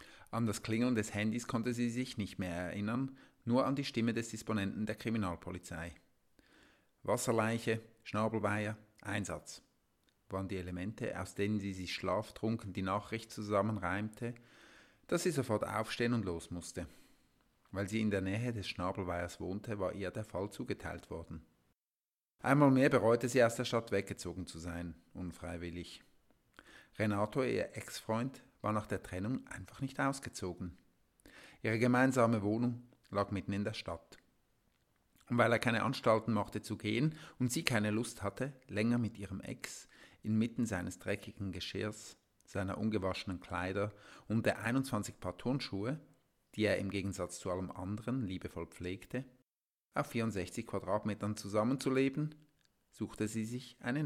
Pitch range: 95-120 Hz